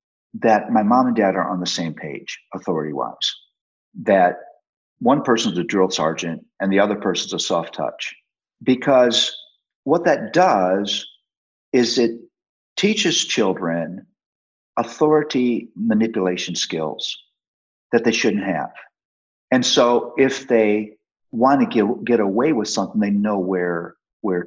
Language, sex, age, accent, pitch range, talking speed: English, male, 50-69, American, 90-120 Hz, 130 wpm